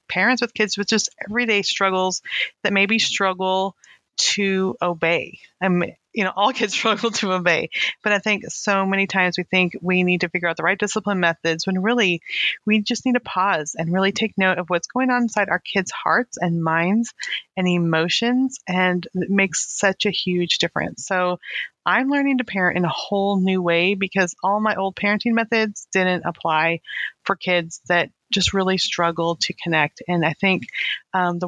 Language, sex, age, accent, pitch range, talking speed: English, female, 30-49, American, 175-205 Hz, 190 wpm